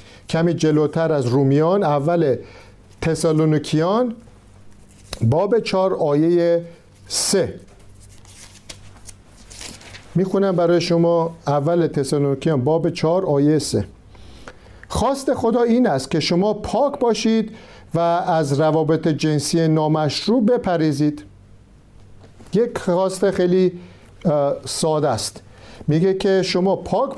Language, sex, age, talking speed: Persian, male, 50-69, 95 wpm